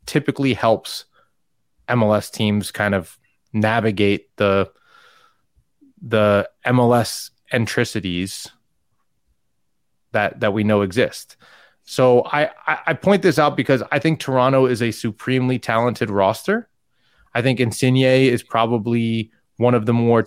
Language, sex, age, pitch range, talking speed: English, male, 20-39, 110-135 Hz, 120 wpm